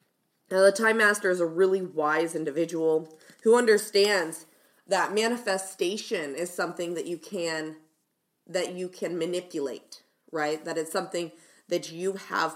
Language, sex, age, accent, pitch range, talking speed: English, female, 20-39, American, 165-210 Hz, 140 wpm